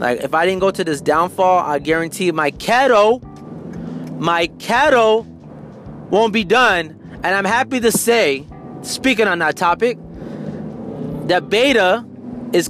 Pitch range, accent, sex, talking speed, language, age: 165-215 Hz, American, male, 135 wpm, English, 30-49